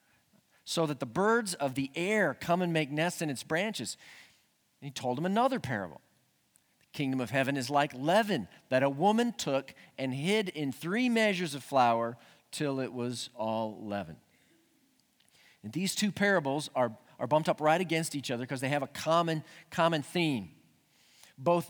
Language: English